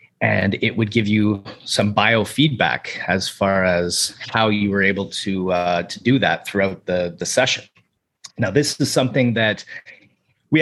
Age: 30-49